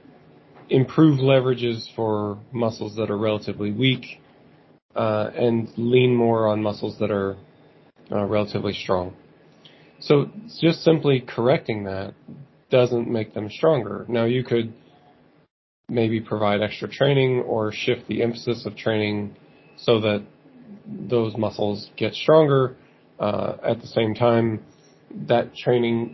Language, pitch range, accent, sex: Italian, 105-120 Hz, American, male